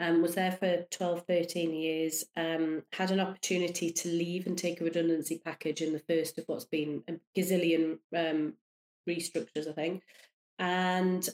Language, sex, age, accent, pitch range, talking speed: English, female, 30-49, British, 165-185 Hz, 170 wpm